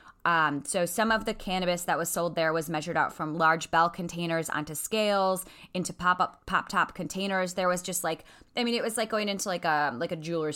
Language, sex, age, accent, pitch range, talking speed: English, female, 20-39, American, 155-185 Hz, 235 wpm